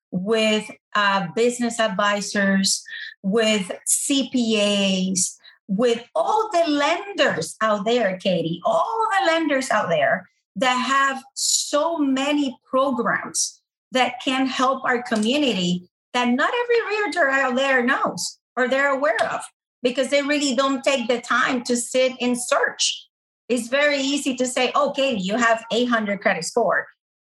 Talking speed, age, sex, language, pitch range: 135 wpm, 40-59, female, English, 225-290 Hz